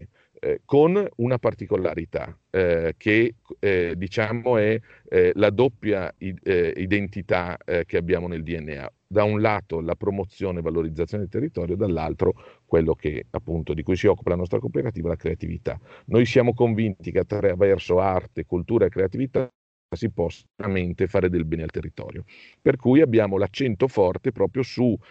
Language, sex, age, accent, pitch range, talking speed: Italian, male, 40-59, native, 90-115 Hz, 155 wpm